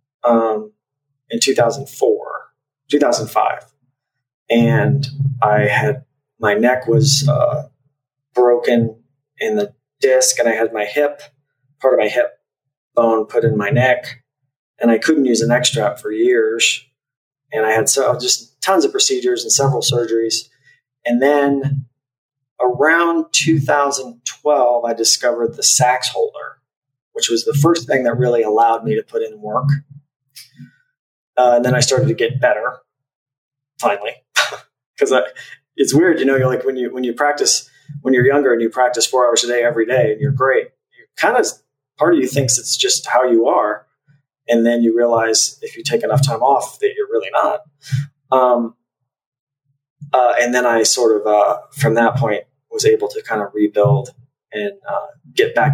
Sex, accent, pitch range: male, American, 125-155 Hz